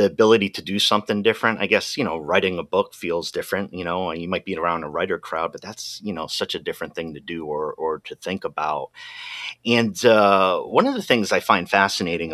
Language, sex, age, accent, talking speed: English, male, 30-49, American, 240 wpm